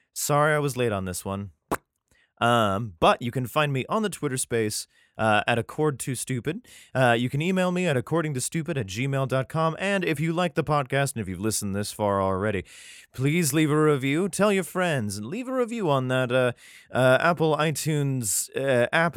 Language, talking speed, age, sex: English, 195 wpm, 20-39, male